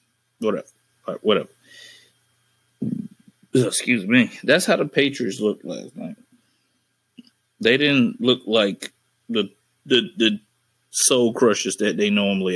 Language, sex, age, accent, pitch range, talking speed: English, male, 30-49, American, 105-160 Hz, 110 wpm